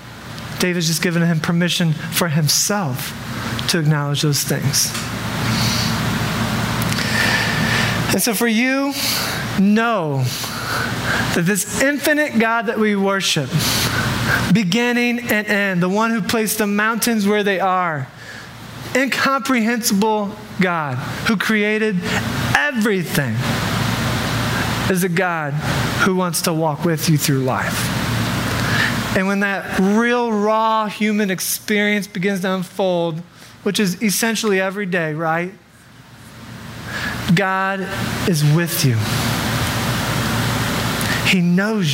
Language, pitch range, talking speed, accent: English, 130-215 Hz, 105 wpm, American